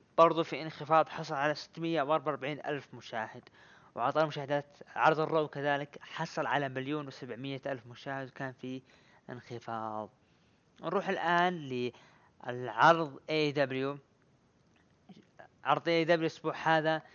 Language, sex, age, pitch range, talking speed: Arabic, female, 20-39, 130-160 Hz, 110 wpm